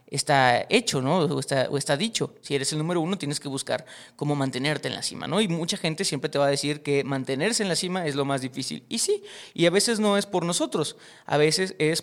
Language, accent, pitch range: Spanish, Mexican, 145-195 Hz